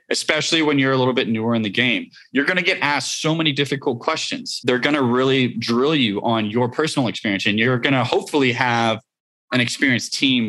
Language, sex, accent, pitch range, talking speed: English, male, American, 115-150 Hz, 215 wpm